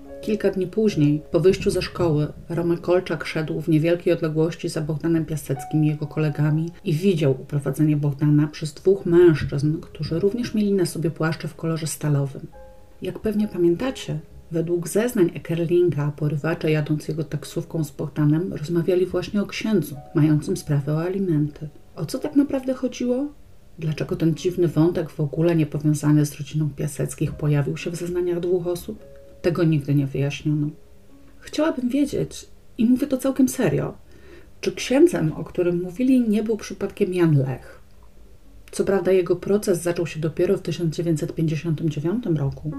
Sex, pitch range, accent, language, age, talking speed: female, 150-185 Hz, native, Polish, 40-59, 150 wpm